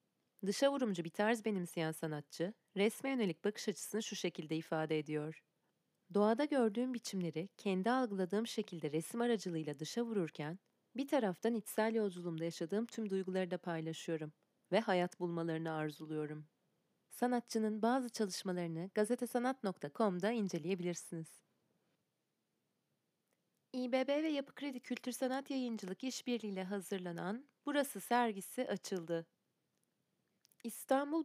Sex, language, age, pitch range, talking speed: female, Turkish, 30-49, 170-245 Hz, 110 wpm